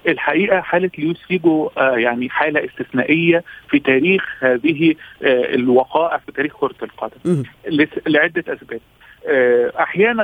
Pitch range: 130-175 Hz